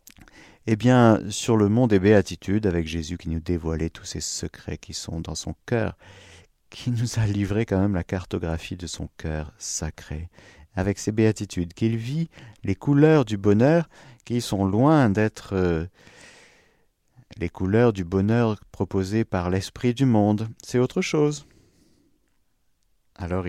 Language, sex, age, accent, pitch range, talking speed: French, male, 50-69, French, 90-125 Hz, 150 wpm